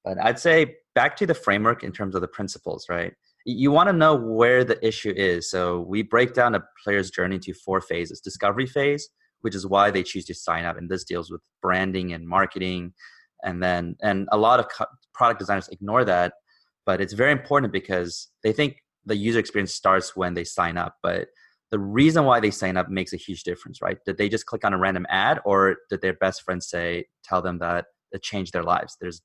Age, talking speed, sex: 30-49, 220 wpm, male